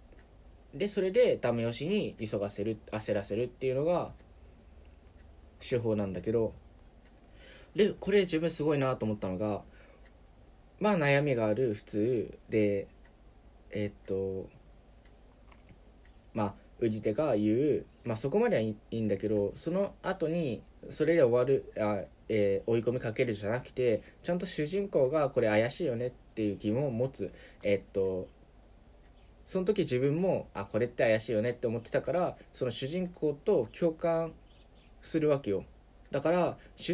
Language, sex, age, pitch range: Japanese, male, 20-39, 105-165 Hz